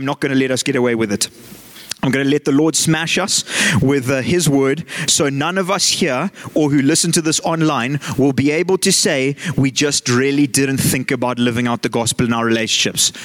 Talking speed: 220 wpm